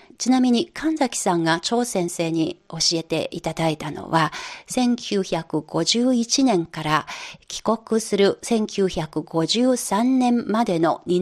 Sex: female